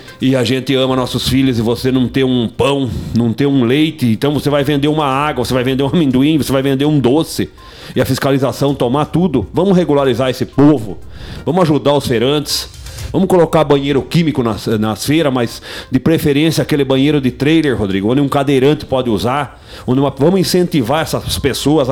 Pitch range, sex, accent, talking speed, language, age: 115-150 Hz, male, Brazilian, 195 wpm, Portuguese, 40-59